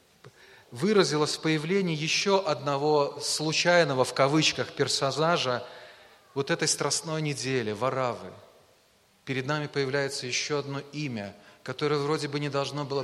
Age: 30-49